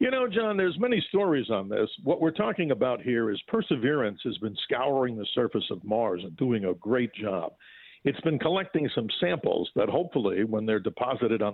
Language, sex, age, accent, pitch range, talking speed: English, male, 50-69, American, 115-165 Hz, 200 wpm